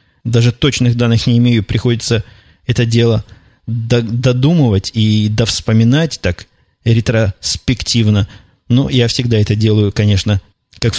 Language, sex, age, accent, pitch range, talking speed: Russian, male, 20-39, native, 100-125 Hz, 115 wpm